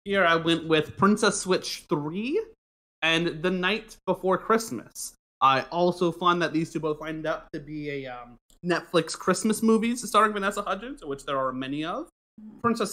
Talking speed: 170 wpm